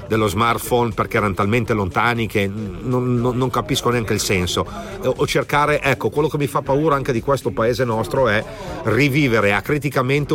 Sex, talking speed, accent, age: male, 175 wpm, native, 40-59